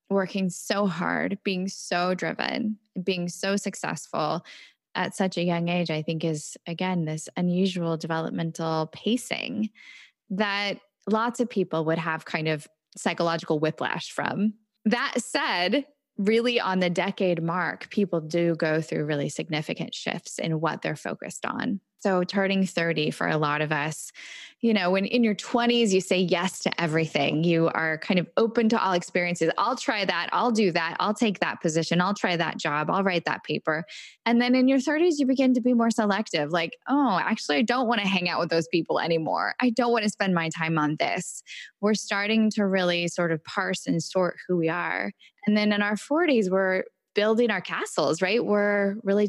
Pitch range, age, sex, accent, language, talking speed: 165-220 Hz, 10-29, female, American, English, 185 wpm